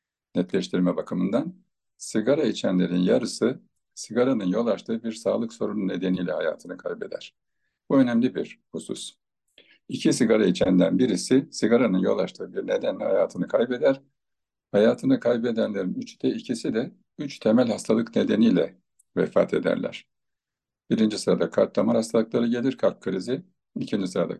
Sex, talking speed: male, 125 wpm